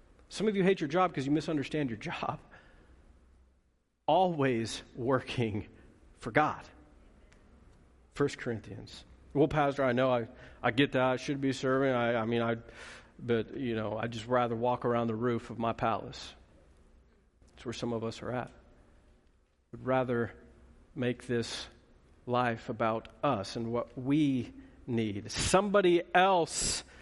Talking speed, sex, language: 150 wpm, male, English